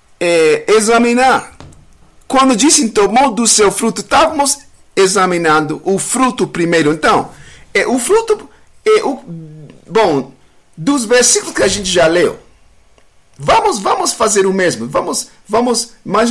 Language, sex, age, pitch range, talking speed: English, male, 50-69, 140-235 Hz, 130 wpm